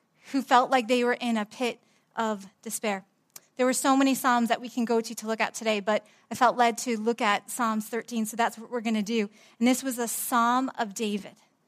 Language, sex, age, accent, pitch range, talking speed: English, female, 30-49, American, 220-265 Hz, 240 wpm